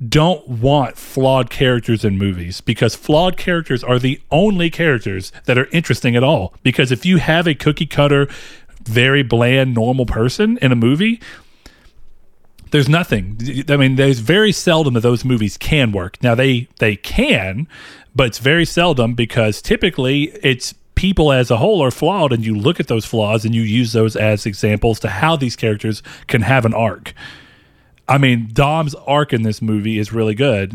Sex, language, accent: male, English, American